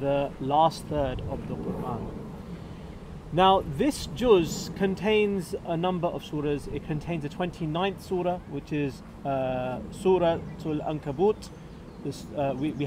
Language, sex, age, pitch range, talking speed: English, male, 30-49, 140-200 Hz, 130 wpm